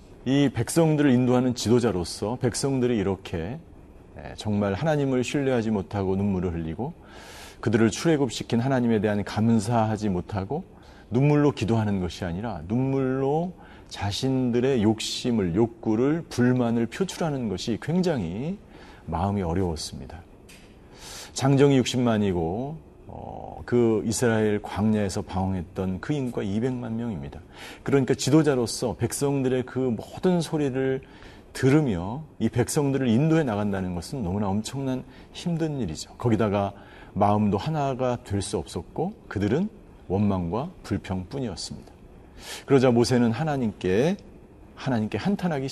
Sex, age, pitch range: male, 40-59, 100-130 Hz